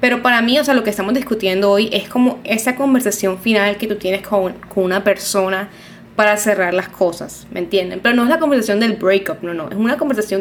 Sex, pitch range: female, 195-235 Hz